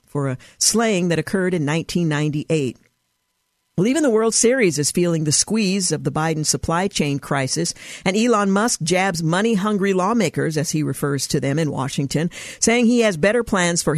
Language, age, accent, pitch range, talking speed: English, 50-69, American, 155-200 Hz, 175 wpm